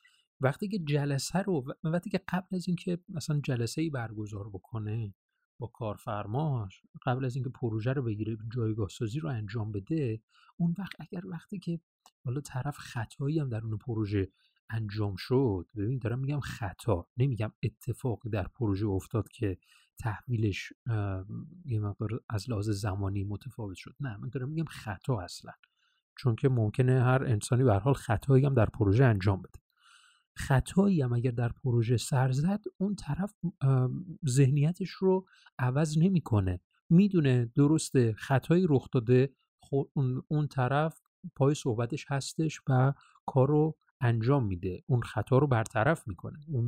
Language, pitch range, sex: Persian, 110-150 Hz, male